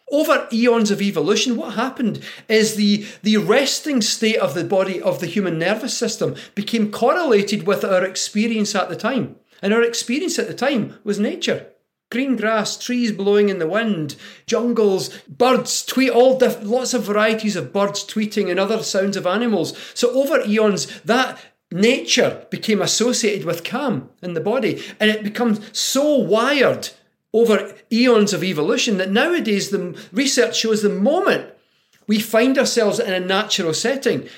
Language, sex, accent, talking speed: English, male, British, 160 wpm